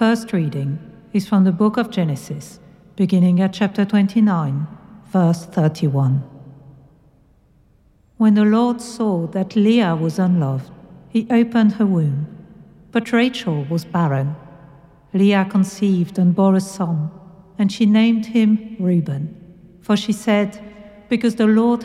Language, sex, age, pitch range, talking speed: English, female, 50-69, 170-210 Hz, 130 wpm